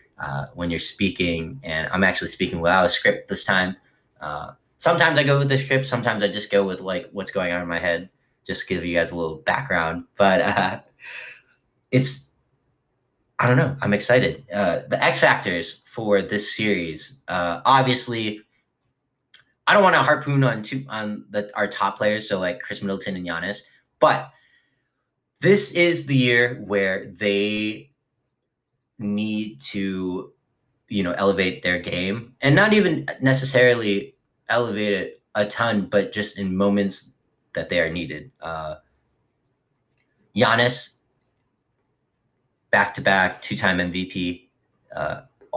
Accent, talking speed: American, 145 wpm